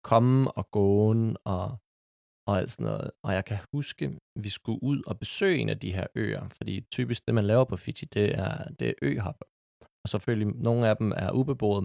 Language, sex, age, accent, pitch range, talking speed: Danish, male, 20-39, native, 100-125 Hz, 210 wpm